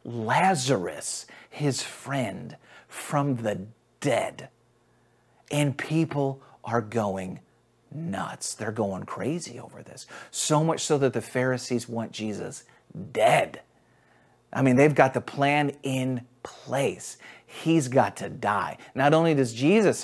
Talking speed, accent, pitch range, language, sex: 125 wpm, American, 145-240 Hz, English, male